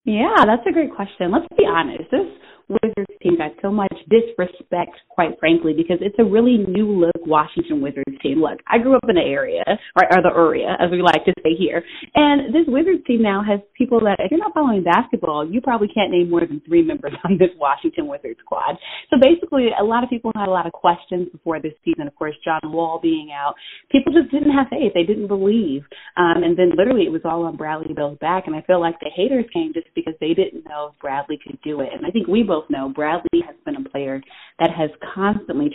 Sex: female